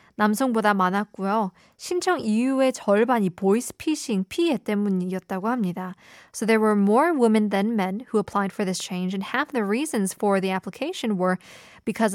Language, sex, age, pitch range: Korean, female, 20-39, 195-245 Hz